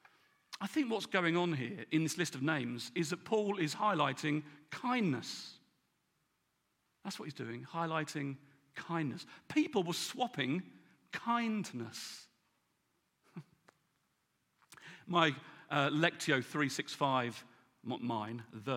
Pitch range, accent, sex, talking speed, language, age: 120-195 Hz, British, male, 110 wpm, English, 40-59